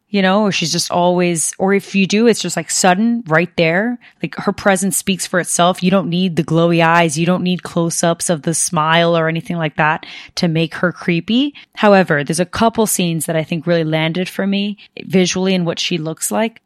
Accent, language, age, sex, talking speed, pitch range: American, English, 20-39, female, 225 wpm, 165-195 Hz